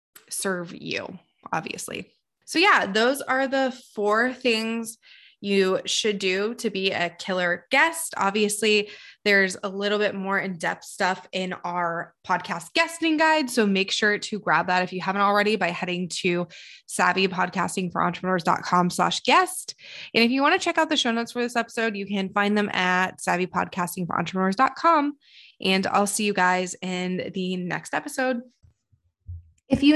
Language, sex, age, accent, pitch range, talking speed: English, female, 20-39, American, 190-245 Hz, 150 wpm